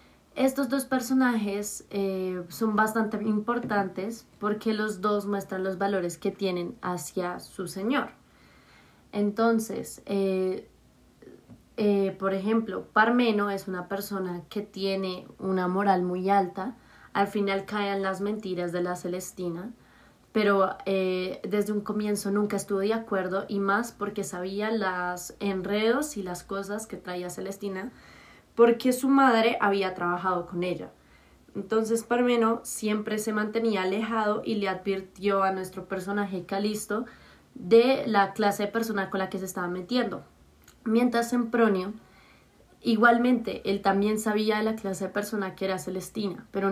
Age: 20-39